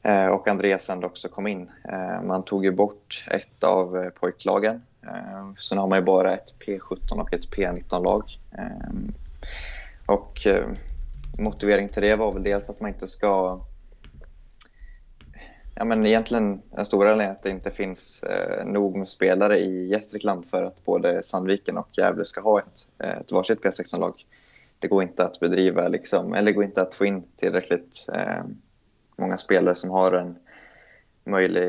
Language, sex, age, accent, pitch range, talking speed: Swedish, male, 20-39, native, 90-105 Hz, 150 wpm